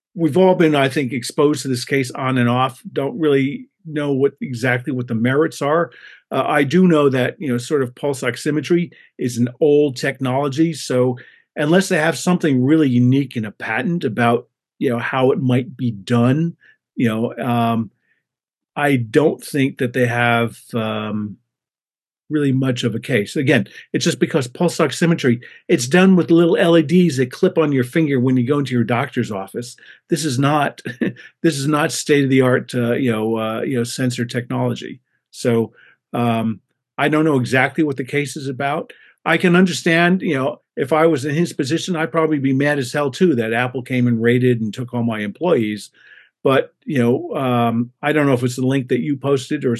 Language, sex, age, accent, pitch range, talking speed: English, male, 50-69, American, 120-155 Hz, 195 wpm